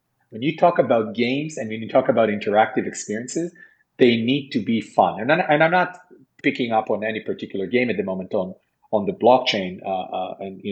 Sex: male